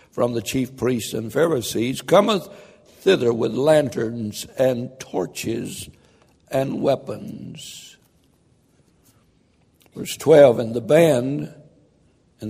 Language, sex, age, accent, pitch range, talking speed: English, male, 60-79, American, 115-140 Hz, 95 wpm